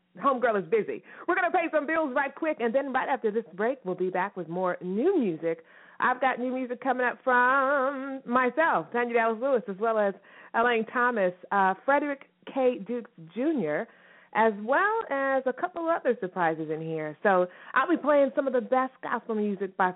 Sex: female